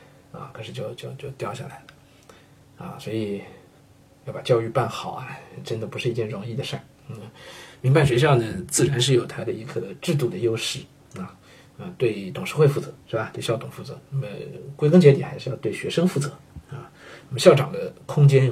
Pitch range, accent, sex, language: 120-145 Hz, native, male, Chinese